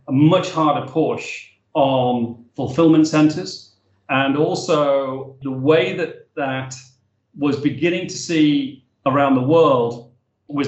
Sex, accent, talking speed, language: male, British, 120 wpm, English